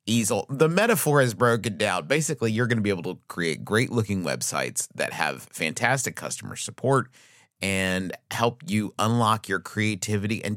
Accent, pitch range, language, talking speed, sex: American, 95-120 Hz, English, 165 wpm, male